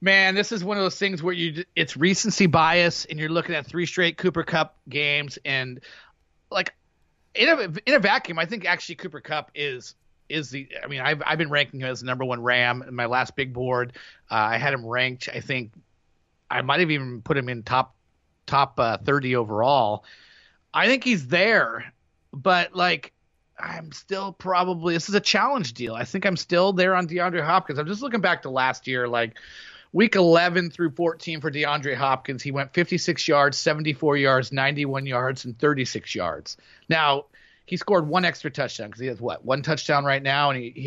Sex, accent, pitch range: male, American, 130-180 Hz